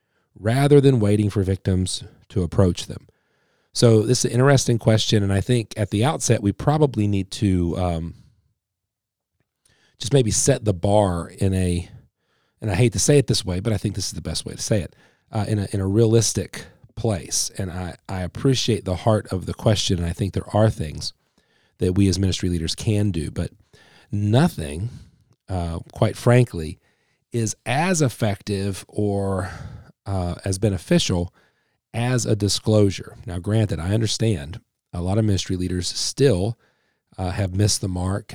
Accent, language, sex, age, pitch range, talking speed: American, English, male, 40-59, 95-115 Hz, 170 wpm